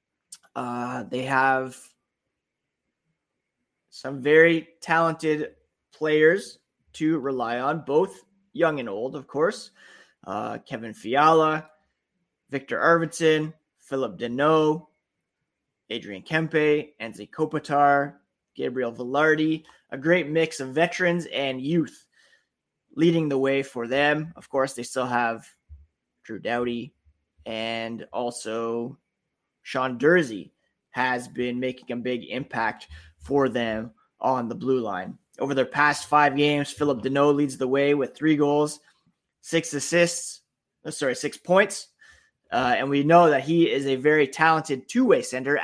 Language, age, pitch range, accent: English, 20-39, 125-160 Hz, American